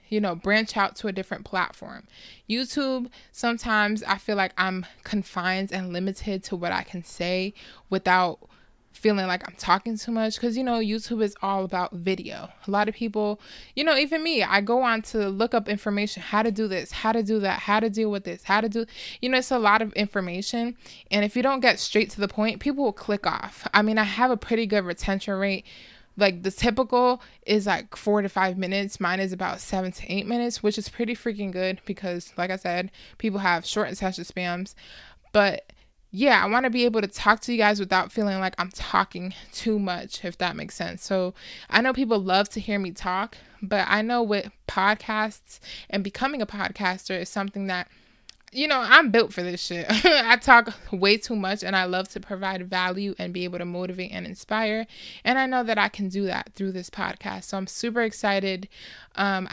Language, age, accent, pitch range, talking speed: English, 20-39, American, 190-225 Hz, 215 wpm